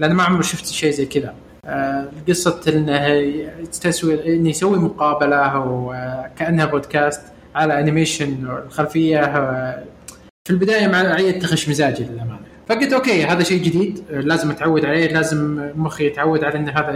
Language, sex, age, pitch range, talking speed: Arabic, male, 20-39, 145-180 Hz, 140 wpm